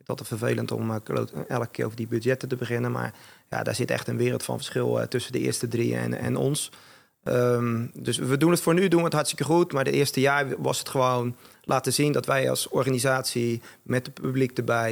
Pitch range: 120-140 Hz